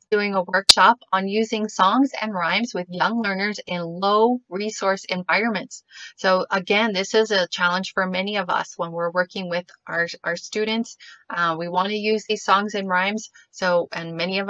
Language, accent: English, American